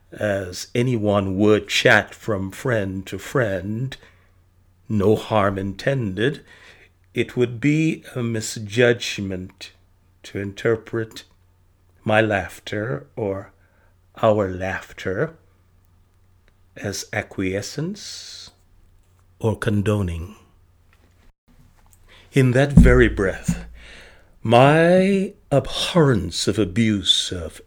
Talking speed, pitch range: 80 wpm, 90-125 Hz